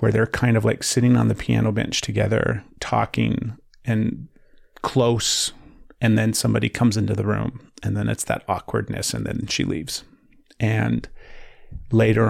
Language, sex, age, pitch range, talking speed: English, male, 30-49, 105-120 Hz, 155 wpm